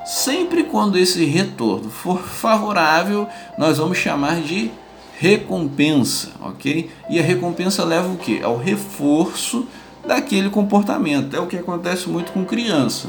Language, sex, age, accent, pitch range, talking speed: Portuguese, male, 20-39, Brazilian, 140-205 Hz, 135 wpm